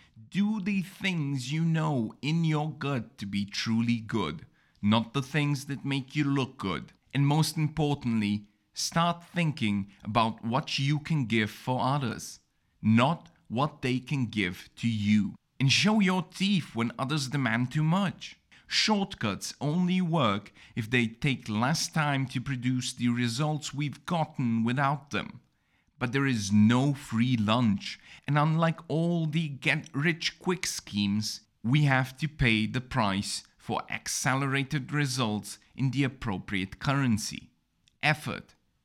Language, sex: English, male